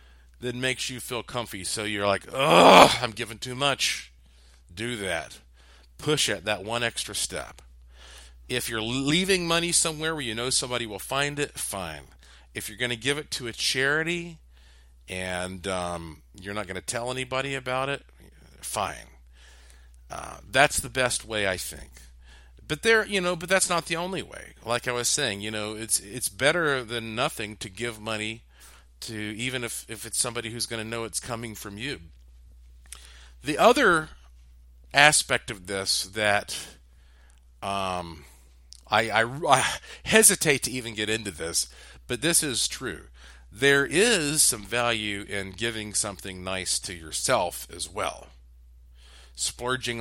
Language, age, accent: English, 40-59, American